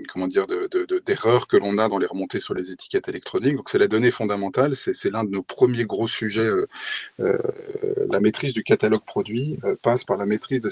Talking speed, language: 215 wpm, French